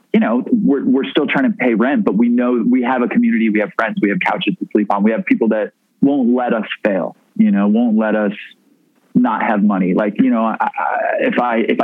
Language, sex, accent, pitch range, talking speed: English, male, American, 150-250 Hz, 240 wpm